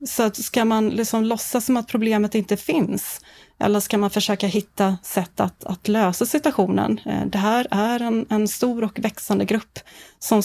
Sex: female